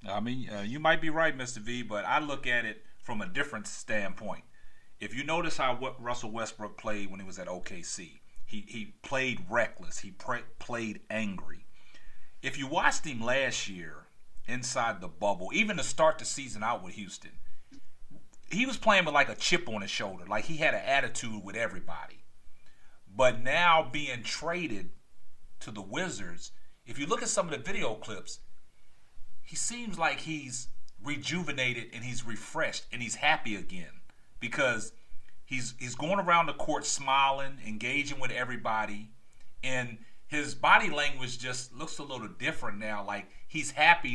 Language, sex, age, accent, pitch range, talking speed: English, male, 40-59, American, 110-145 Hz, 170 wpm